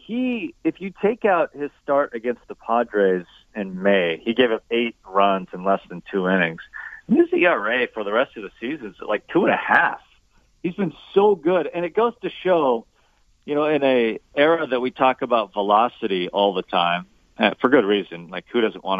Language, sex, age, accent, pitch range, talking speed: English, male, 40-59, American, 110-135 Hz, 205 wpm